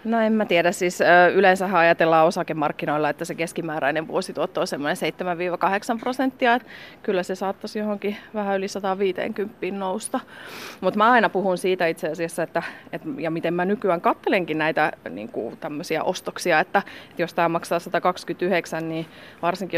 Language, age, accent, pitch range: Finnish, 30-49, native, 165-200 Hz